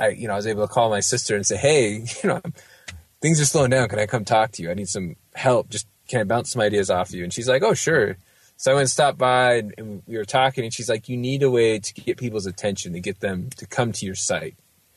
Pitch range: 105-125 Hz